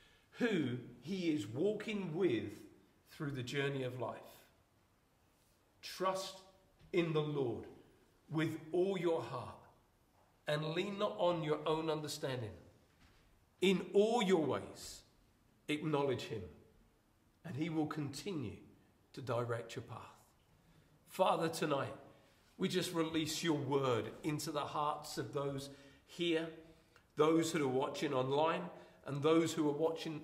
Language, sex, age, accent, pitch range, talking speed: English, male, 50-69, British, 130-170 Hz, 125 wpm